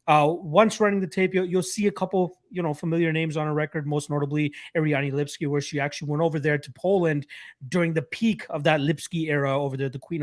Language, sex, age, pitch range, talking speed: English, male, 30-49, 140-165 Hz, 235 wpm